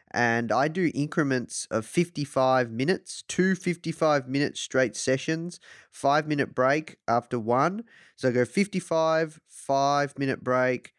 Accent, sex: Australian, male